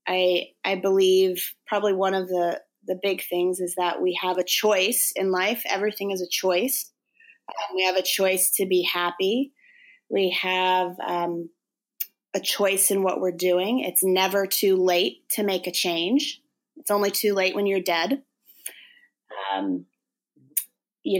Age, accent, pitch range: 20-39, American, 180-215 Hz